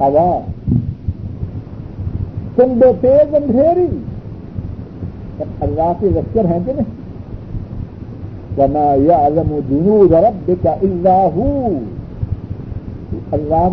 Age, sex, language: 60-79, male, Urdu